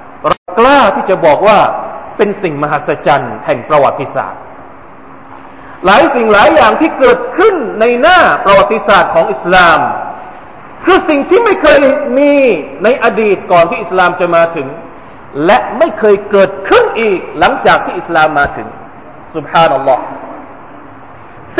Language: Thai